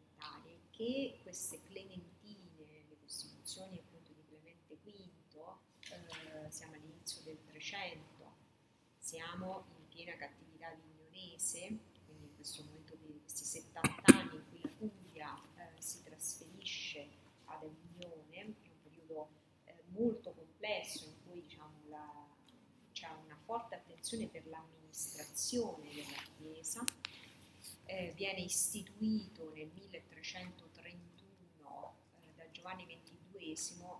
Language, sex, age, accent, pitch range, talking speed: Italian, female, 30-49, native, 150-185 Hz, 110 wpm